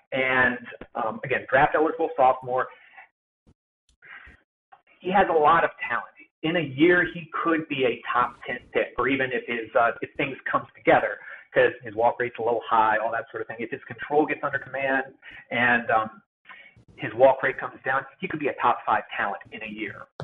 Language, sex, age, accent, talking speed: English, male, 40-59, American, 195 wpm